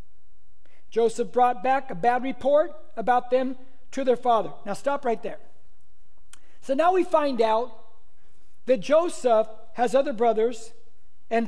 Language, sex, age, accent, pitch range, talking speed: English, male, 60-79, American, 230-285 Hz, 135 wpm